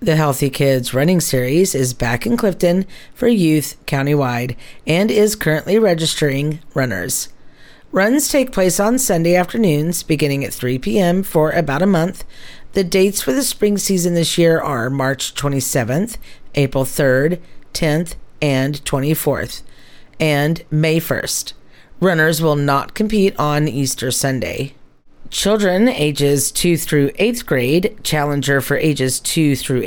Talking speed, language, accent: 135 wpm, English, American